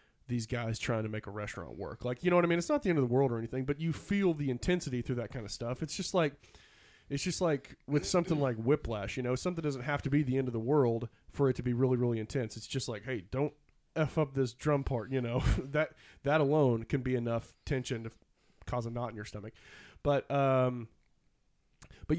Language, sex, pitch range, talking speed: English, male, 115-140 Hz, 245 wpm